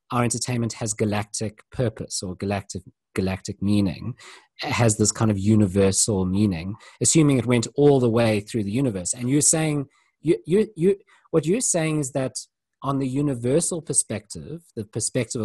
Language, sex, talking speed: English, male, 170 wpm